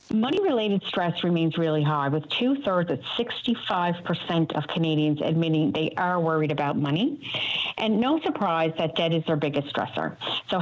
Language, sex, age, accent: English, female, 50-69, American